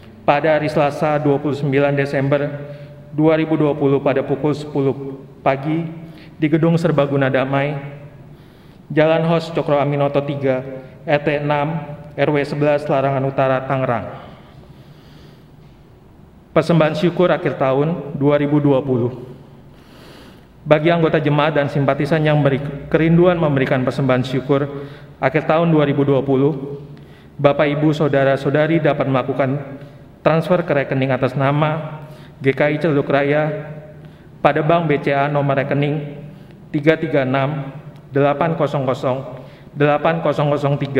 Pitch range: 140-155 Hz